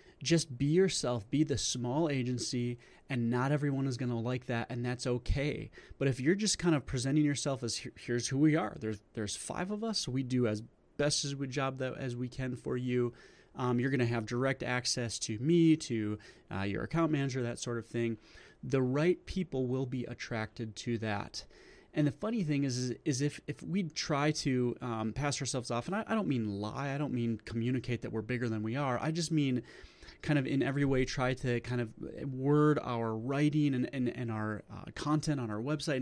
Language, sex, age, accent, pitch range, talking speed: English, male, 30-49, American, 120-145 Hz, 220 wpm